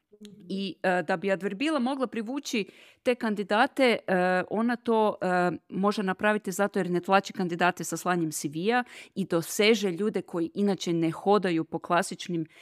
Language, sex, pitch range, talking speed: Croatian, female, 175-220 Hz, 150 wpm